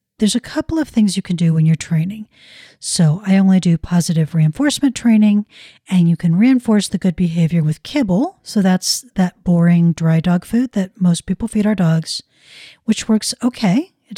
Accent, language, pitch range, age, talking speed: American, English, 170-215 Hz, 40-59, 185 wpm